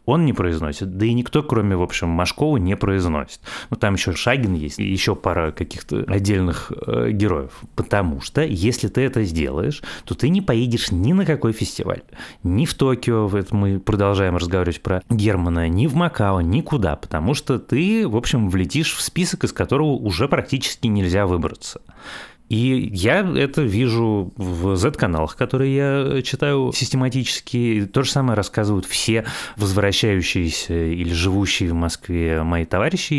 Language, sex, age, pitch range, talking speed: Russian, male, 30-49, 90-120 Hz, 160 wpm